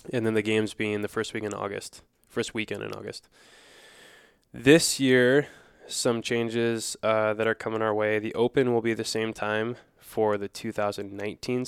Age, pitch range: 20-39, 105-120 Hz